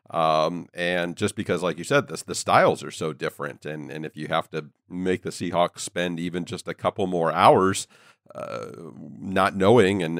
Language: English